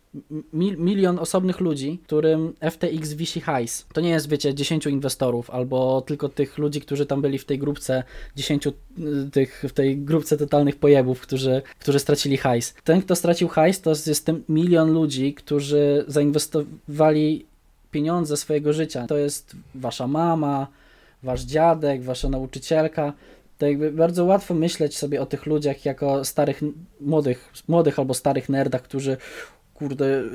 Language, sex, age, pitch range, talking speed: Polish, male, 20-39, 140-160 Hz, 150 wpm